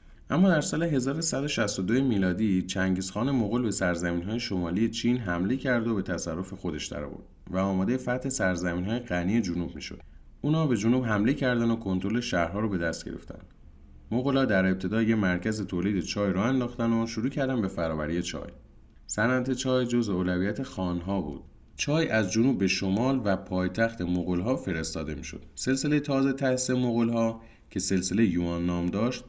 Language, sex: Persian, male